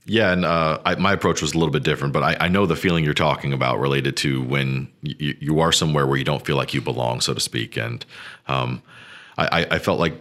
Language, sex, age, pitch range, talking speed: English, male, 40-59, 70-85 Hz, 255 wpm